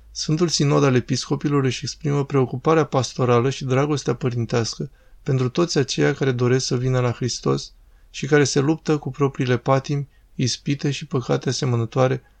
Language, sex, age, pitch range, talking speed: Romanian, male, 20-39, 125-140 Hz, 150 wpm